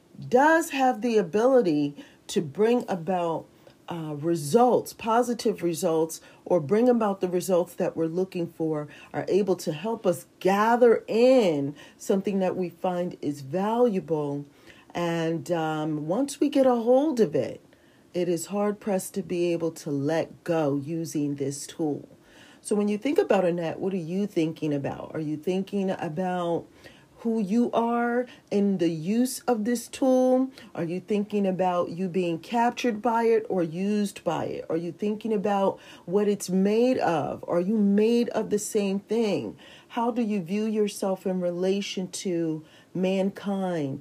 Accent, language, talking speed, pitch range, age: American, English, 160 wpm, 170-220 Hz, 40-59